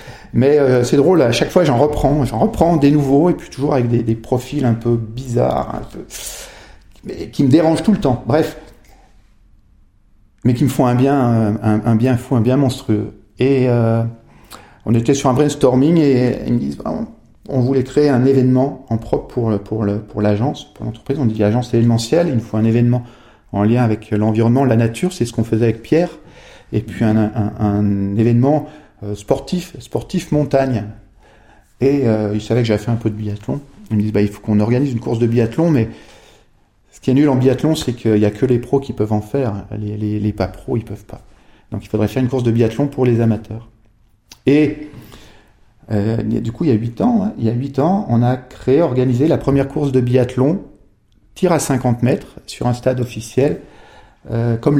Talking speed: 215 wpm